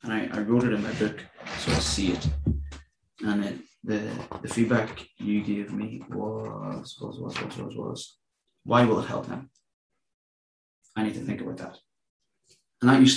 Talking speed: 180 wpm